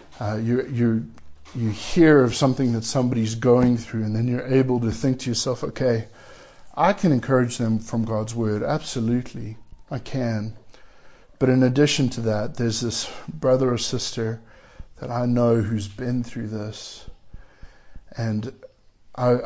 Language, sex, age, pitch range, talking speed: English, male, 50-69, 110-135 Hz, 150 wpm